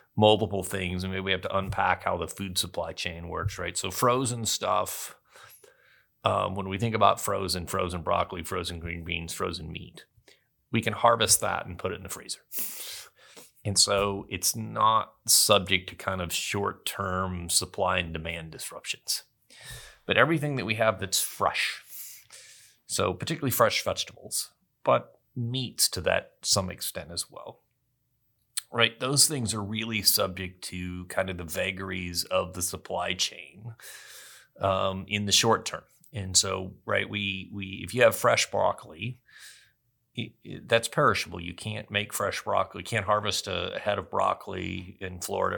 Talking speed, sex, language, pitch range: 160 wpm, male, English, 90-110 Hz